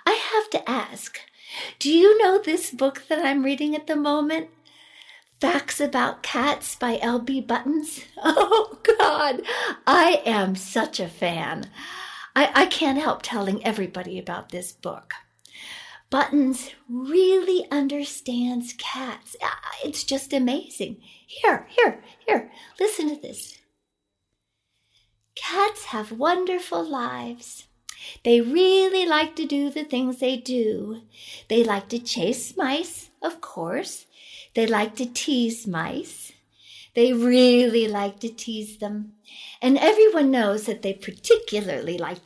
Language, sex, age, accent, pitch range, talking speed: English, female, 50-69, American, 205-305 Hz, 125 wpm